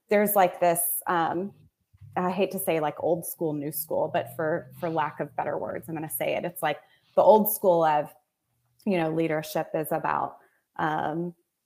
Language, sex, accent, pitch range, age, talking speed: English, female, American, 155-180 Hz, 20-39, 190 wpm